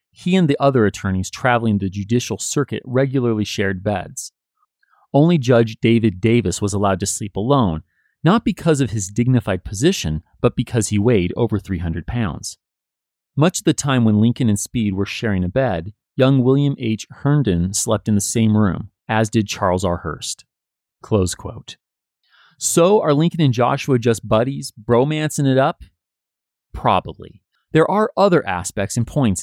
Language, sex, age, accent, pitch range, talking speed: English, male, 30-49, American, 95-135 Hz, 160 wpm